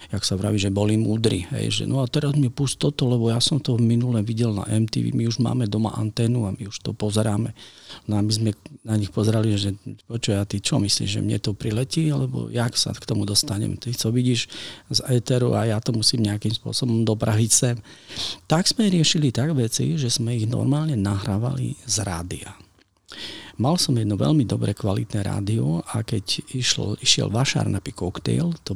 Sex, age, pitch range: male, 40-59, 105-130 Hz